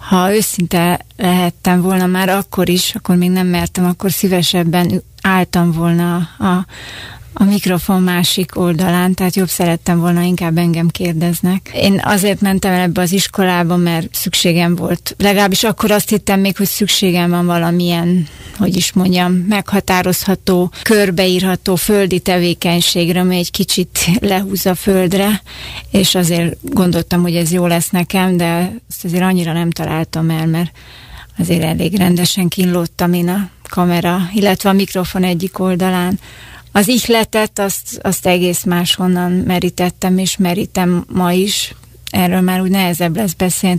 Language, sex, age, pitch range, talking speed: Hungarian, female, 30-49, 175-190 Hz, 145 wpm